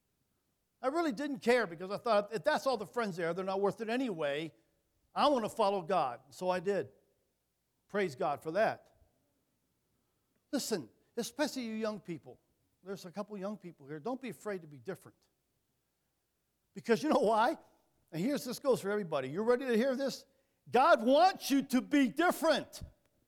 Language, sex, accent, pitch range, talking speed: English, male, American, 160-240 Hz, 175 wpm